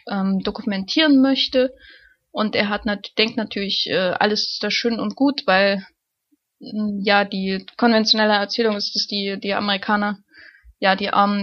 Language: German